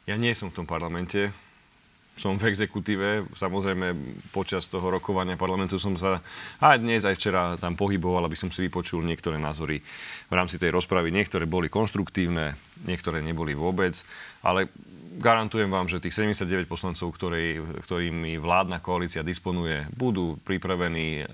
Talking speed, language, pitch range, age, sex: 145 wpm, Slovak, 90-105 Hz, 30-49, male